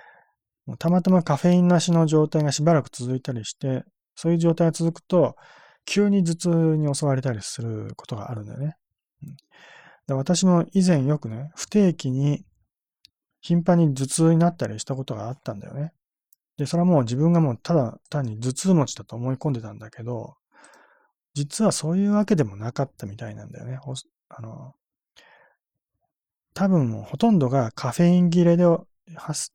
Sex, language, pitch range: male, Japanese, 130-170 Hz